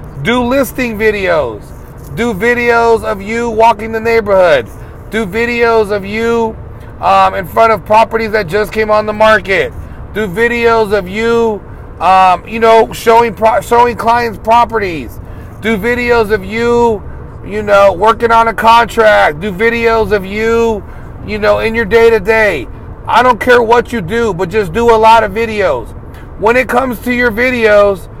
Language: English